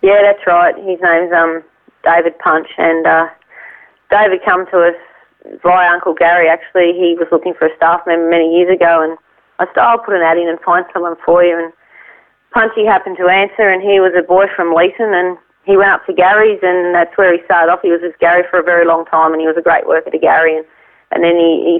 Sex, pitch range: female, 160-180 Hz